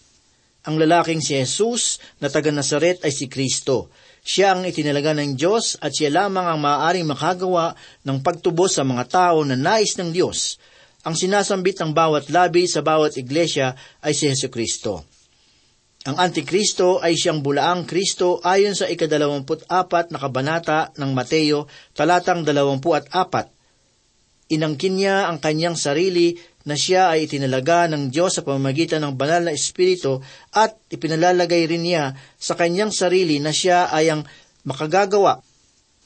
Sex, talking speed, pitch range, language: male, 140 wpm, 140-180 Hz, Filipino